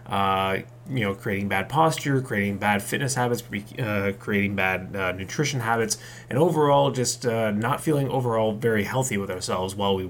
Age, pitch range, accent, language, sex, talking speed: 30-49, 105-135 Hz, American, English, male, 170 wpm